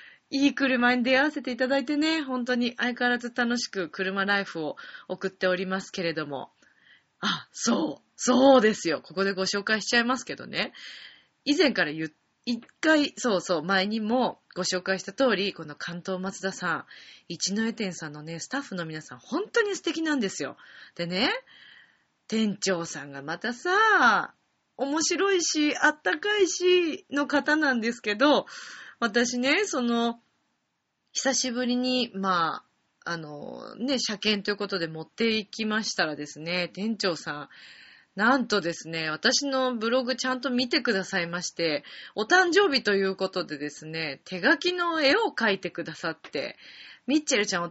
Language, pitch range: Japanese, 175-275 Hz